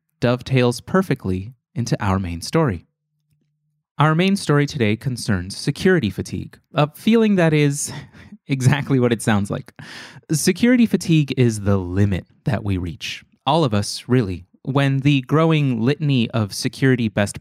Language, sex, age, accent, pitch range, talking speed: English, male, 30-49, American, 110-155 Hz, 140 wpm